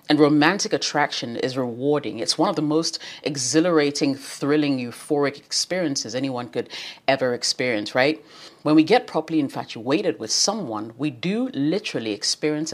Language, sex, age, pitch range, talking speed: English, female, 30-49, 135-165 Hz, 140 wpm